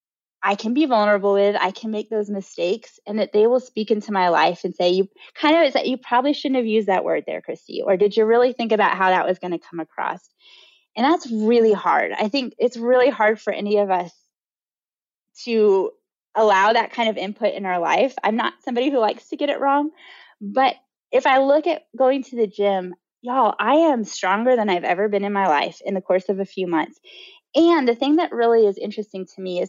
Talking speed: 230 wpm